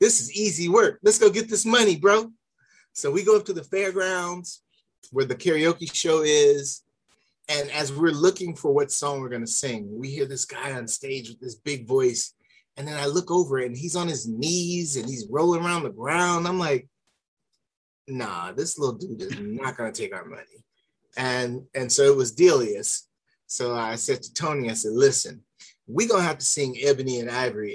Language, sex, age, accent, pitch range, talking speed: English, male, 30-49, American, 120-180 Hz, 205 wpm